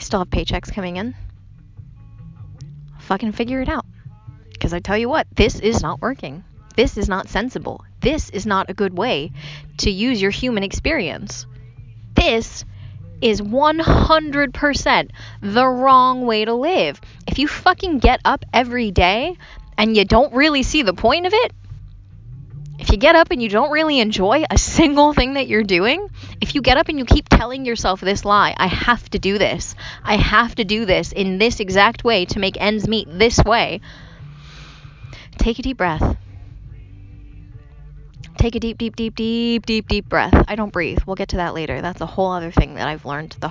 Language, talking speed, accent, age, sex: English, 190 wpm, American, 20-39, female